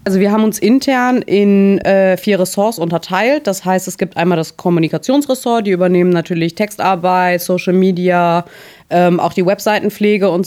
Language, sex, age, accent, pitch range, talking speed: German, female, 20-39, German, 170-195 Hz, 160 wpm